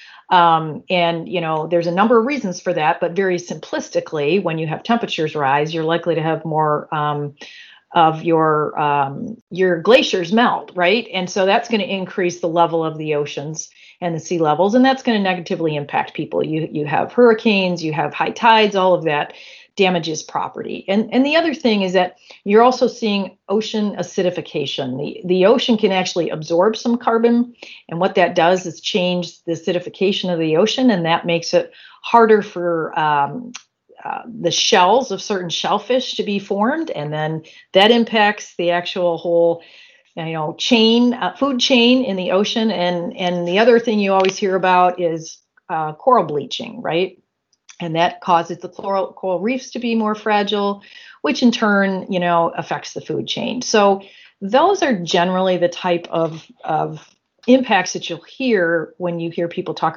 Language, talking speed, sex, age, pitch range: English, 180 wpm, female, 40-59, 170-225 Hz